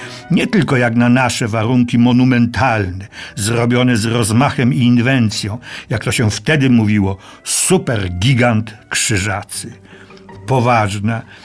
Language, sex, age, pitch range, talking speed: Polish, male, 60-79, 110-140 Hz, 110 wpm